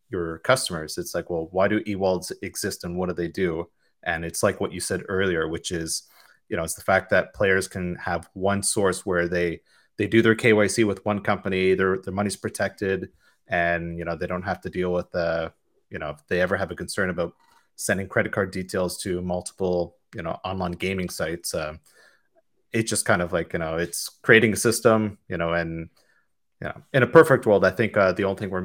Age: 30-49